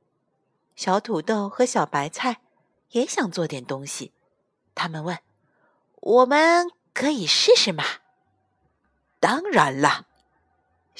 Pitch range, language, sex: 185-270 Hz, Chinese, female